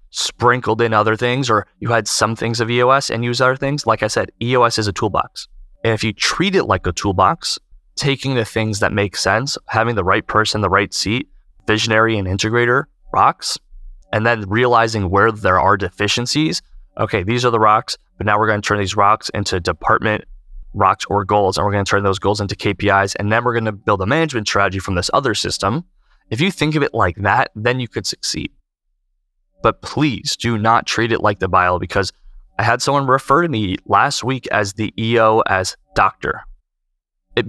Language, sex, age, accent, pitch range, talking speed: English, male, 20-39, American, 100-115 Hz, 205 wpm